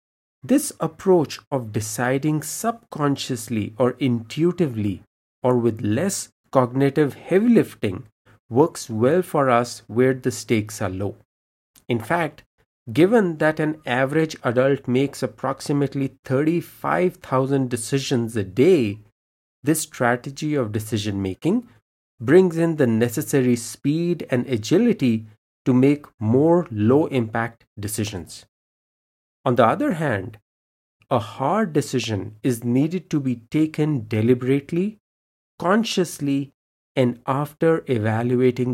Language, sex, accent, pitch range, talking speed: English, male, Indian, 110-150 Hz, 105 wpm